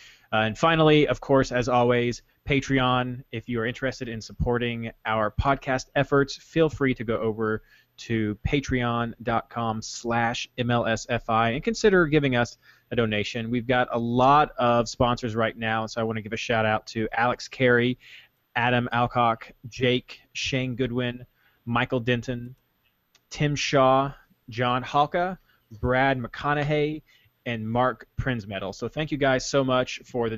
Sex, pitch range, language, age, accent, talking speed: male, 115-130 Hz, English, 20-39, American, 145 wpm